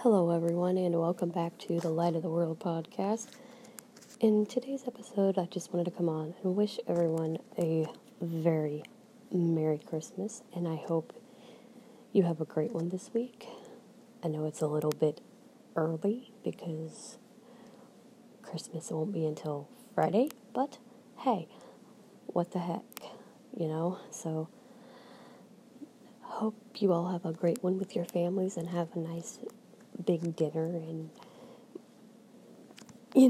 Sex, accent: female, American